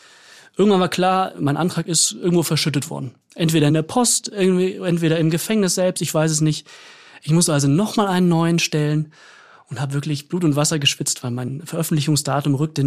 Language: German